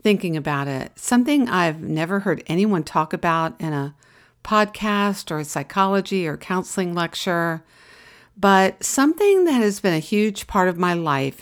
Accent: American